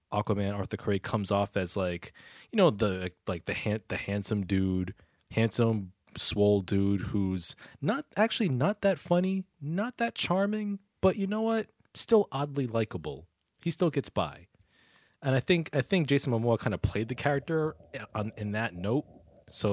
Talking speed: 175 wpm